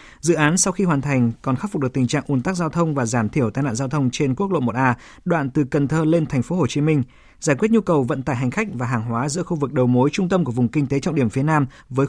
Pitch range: 130-165 Hz